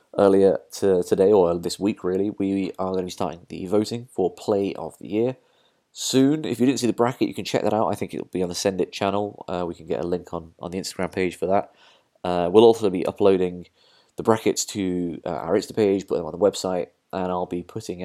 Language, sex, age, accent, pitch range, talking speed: English, male, 20-39, British, 85-100 Hz, 250 wpm